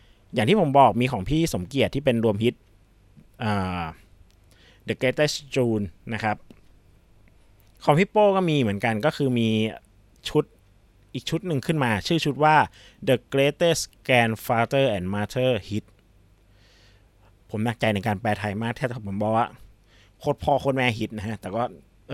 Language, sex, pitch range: Thai, male, 100-130 Hz